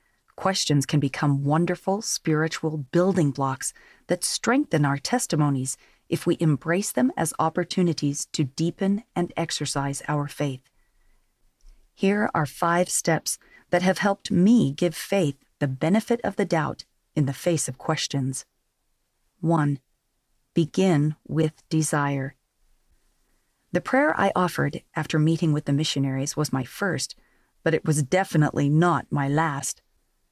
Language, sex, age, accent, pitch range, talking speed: English, female, 40-59, American, 140-180 Hz, 130 wpm